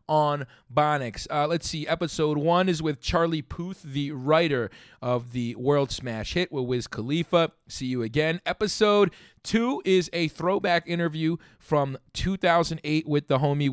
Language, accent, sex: English, American, male